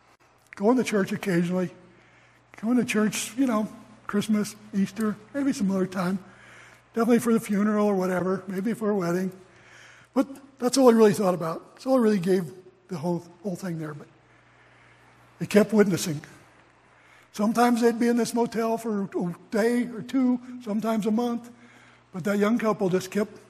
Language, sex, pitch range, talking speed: English, male, 165-215 Hz, 170 wpm